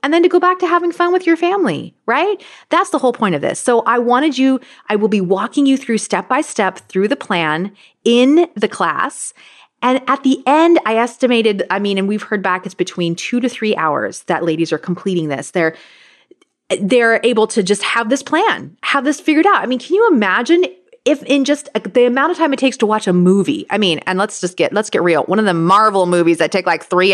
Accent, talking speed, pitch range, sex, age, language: American, 235 wpm, 190-290 Hz, female, 30-49, English